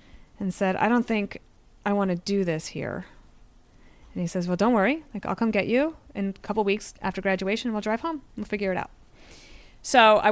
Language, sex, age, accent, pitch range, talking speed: English, female, 30-49, American, 180-220 Hz, 220 wpm